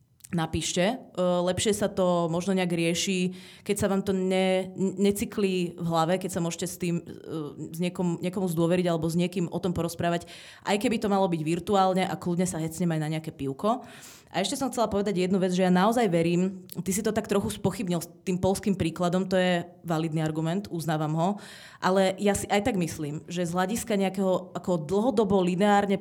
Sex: female